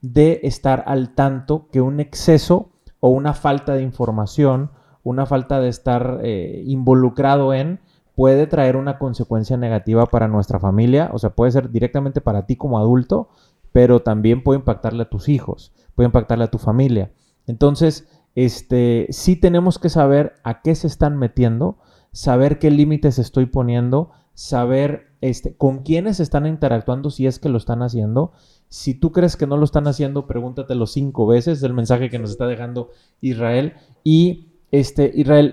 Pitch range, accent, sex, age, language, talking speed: 120-145 Hz, Mexican, male, 30-49, Spanish, 160 wpm